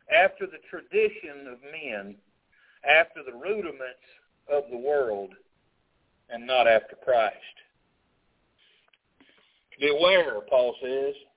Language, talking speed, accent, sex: English, 95 wpm, American, male